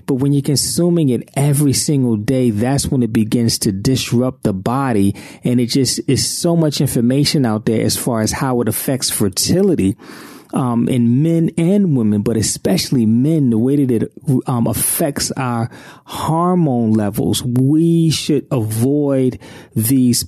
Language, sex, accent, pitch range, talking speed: English, male, American, 110-140 Hz, 155 wpm